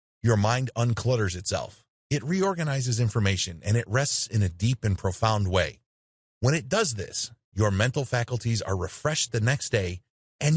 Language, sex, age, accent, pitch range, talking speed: English, male, 30-49, American, 100-130 Hz, 165 wpm